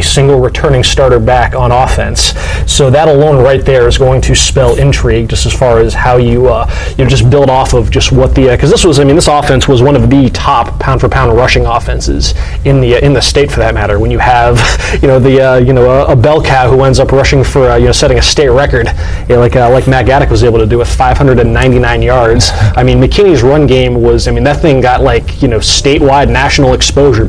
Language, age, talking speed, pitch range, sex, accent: English, 20-39, 250 wpm, 120-140 Hz, male, American